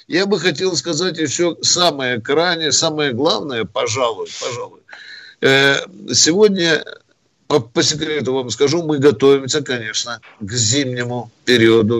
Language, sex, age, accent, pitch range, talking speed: Russian, male, 60-79, native, 120-165 Hz, 115 wpm